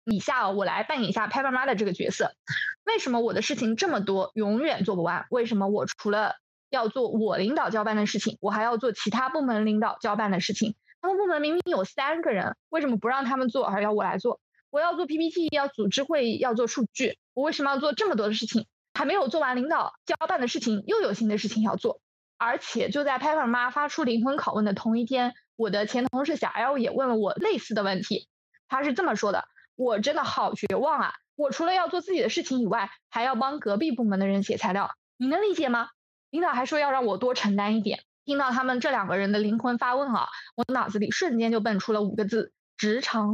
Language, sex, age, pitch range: Chinese, female, 20-39, 215-280 Hz